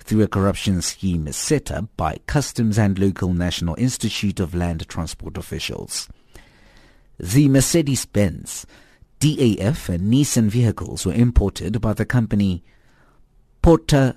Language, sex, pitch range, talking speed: English, male, 95-130 Hz, 125 wpm